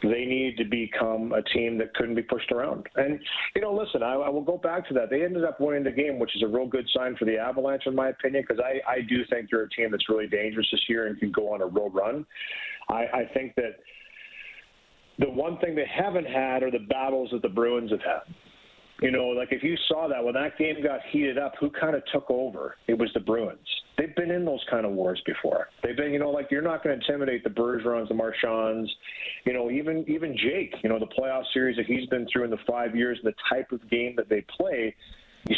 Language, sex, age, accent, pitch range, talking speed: English, male, 40-59, American, 115-135 Hz, 250 wpm